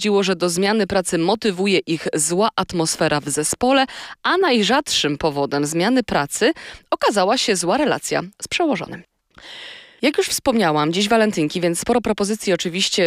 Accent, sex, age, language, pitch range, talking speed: native, female, 20-39, Polish, 170-240 Hz, 140 wpm